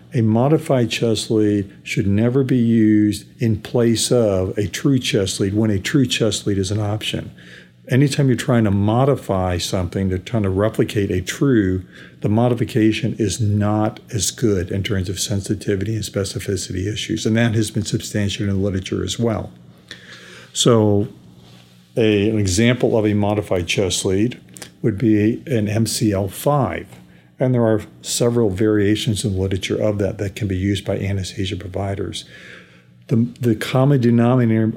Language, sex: English, male